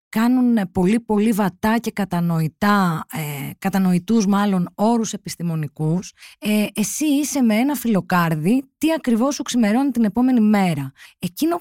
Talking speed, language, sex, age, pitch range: 130 wpm, Greek, female, 20-39, 175-245 Hz